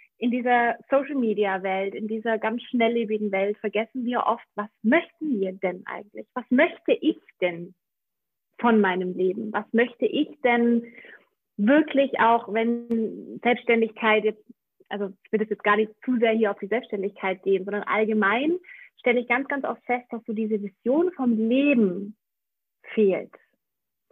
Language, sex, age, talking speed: German, female, 30-49, 150 wpm